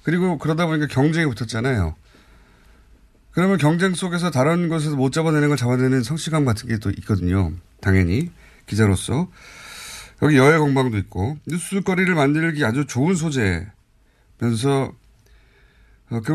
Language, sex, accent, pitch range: Korean, male, native, 105-145 Hz